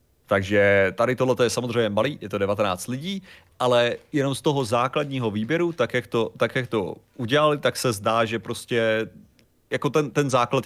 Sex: male